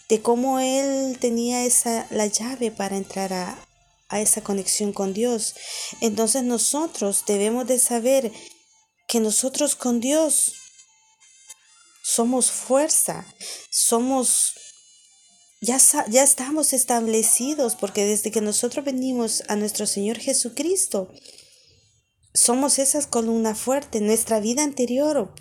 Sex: female